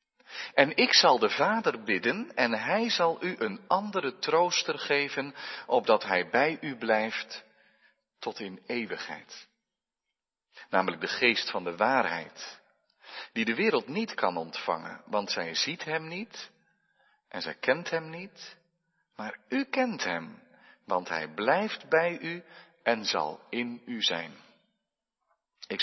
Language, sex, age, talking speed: Dutch, male, 40-59, 135 wpm